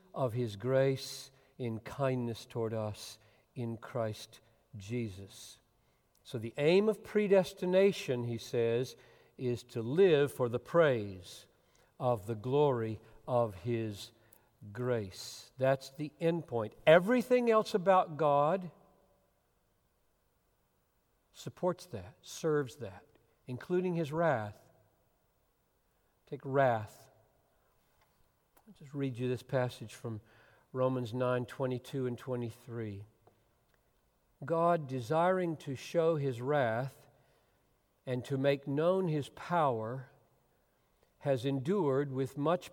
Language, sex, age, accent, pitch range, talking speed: English, male, 50-69, American, 115-155 Hz, 105 wpm